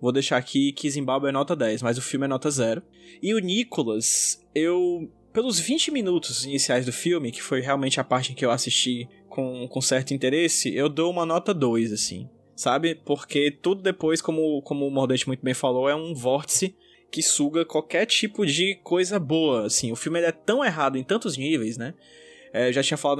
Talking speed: 205 wpm